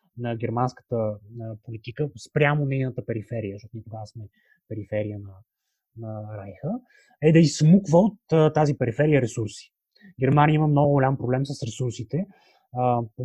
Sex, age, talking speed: male, 20-39, 130 wpm